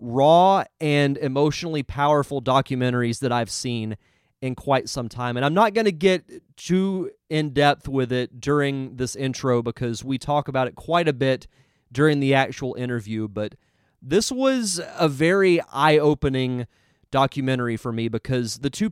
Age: 30-49